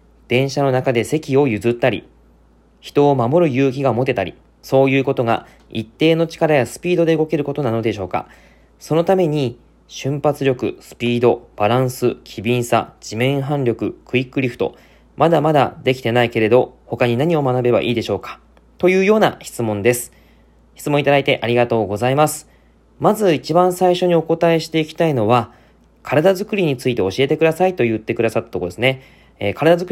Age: 20-39